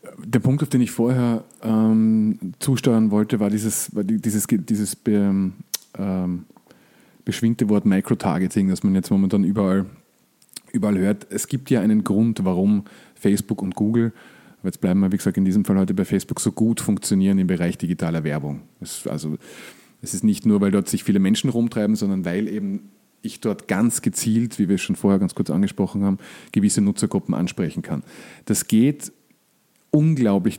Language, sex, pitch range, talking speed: German, male, 100-125 Hz, 175 wpm